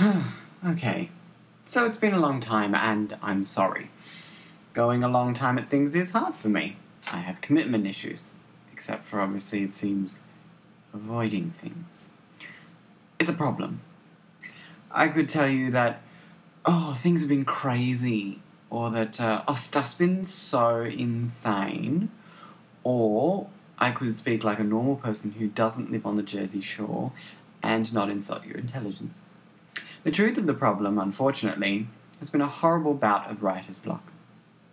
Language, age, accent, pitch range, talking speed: English, 20-39, British, 110-170 Hz, 150 wpm